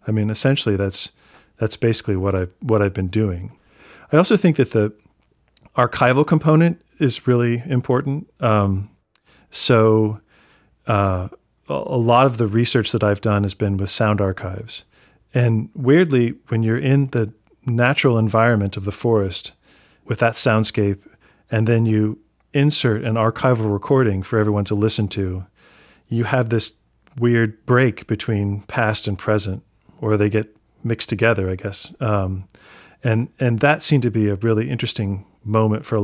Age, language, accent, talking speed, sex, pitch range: 40-59, English, American, 155 wpm, male, 100-120 Hz